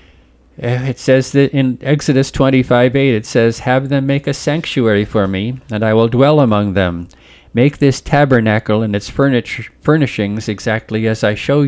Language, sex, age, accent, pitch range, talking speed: English, male, 50-69, American, 100-130 Hz, 165 wpm